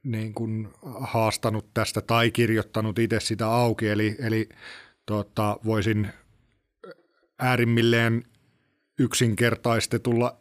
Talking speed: 85 wpm